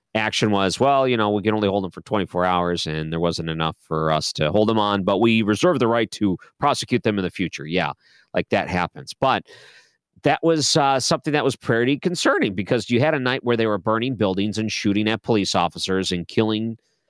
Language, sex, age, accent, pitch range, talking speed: English, male, 40-59, American, 95-120 Hz, 225 wpm